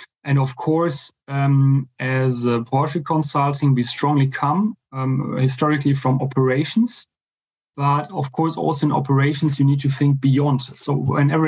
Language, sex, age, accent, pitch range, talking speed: English, male, 30-49, German, 130-150 Hz, 145 wpm